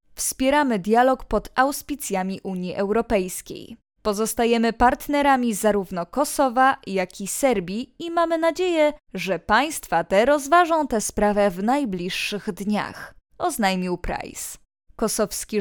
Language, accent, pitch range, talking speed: Polish, native, 200-275 Hz, 110 wpm